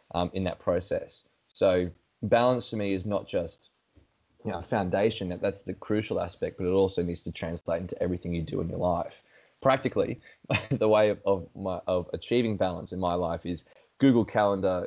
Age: 20-39